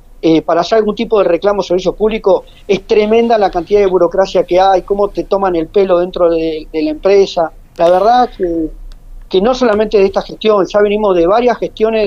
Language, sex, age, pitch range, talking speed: Spanish, male, 40-59, 175-220 Hz, 210 wpm